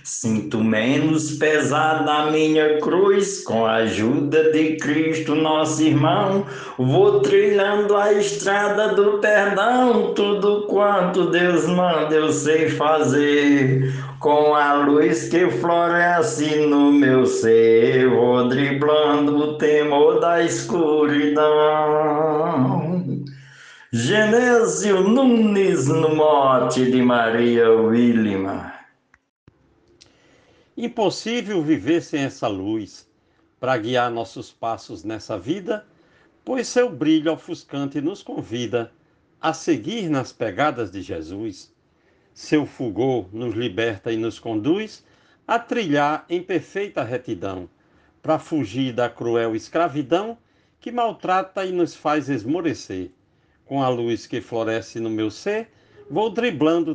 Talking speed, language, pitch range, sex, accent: 110 wpm, Portuguese, 130-185 Hz, male, Brazilian